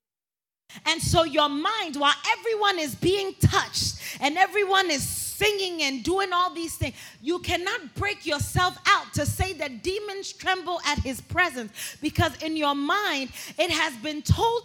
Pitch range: 260-355 Hz